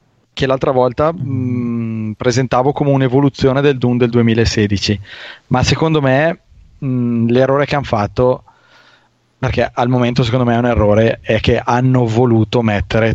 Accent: native